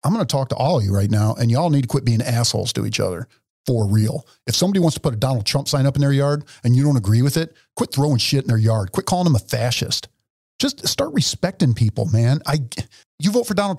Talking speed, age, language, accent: 265 wpm, 50-69, English, American